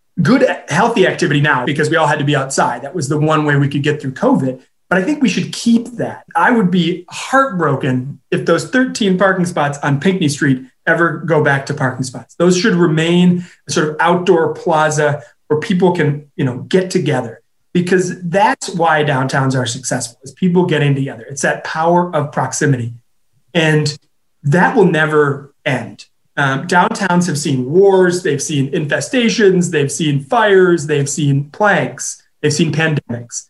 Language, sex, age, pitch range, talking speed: English, male, 30-49, 145-180 Hz, 175 wpm